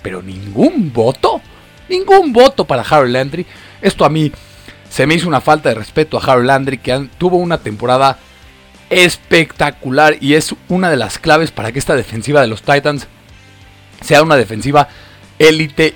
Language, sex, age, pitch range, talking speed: Spanish, male, 40-59, 110-170 Hz, 160 wpm